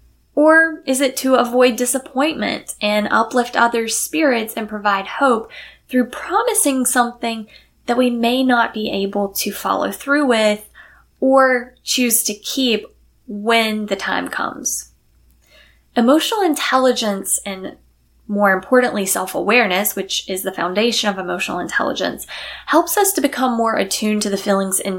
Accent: American